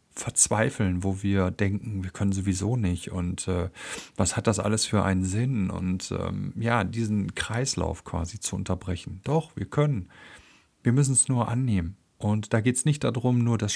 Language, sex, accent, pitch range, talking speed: German, male, German, 100-135 Hz, 180 wpm